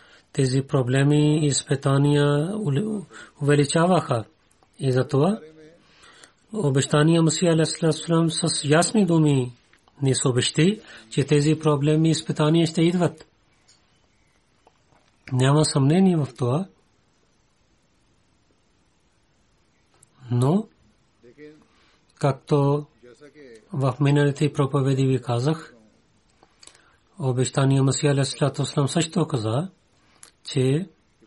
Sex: male